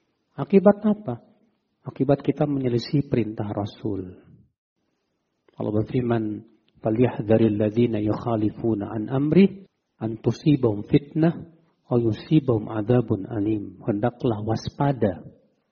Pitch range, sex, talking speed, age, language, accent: 115-165 Hz, male, 40 wpm, 50-69, Indonesian, native